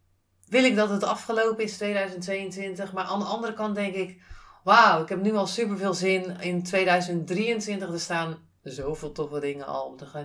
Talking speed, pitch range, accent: 195 wpm, 160-190 Hz, Dutch